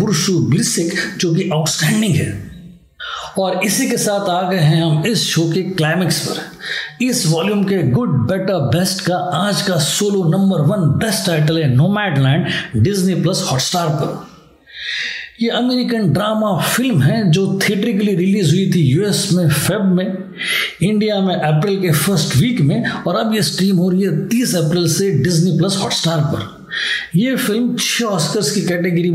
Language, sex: Hindi, male